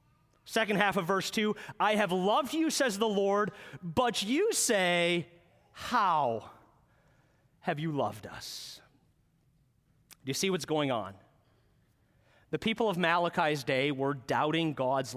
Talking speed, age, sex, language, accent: 135 wpm, 30-49, male, English, American